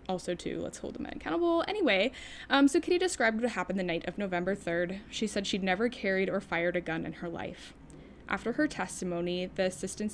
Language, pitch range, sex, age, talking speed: English, 170-205 Hz, female, 10-29, 205 wpm